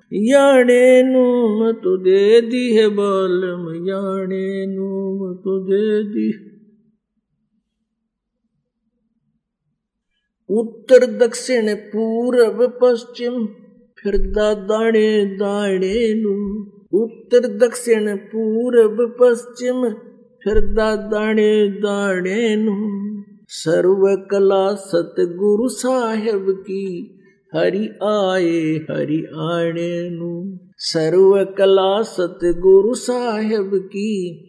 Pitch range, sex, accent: 190-230 Hz, male, native